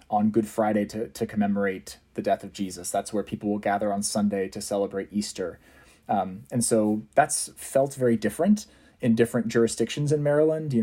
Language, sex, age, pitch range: English, male, 30-49, 105-120 Hz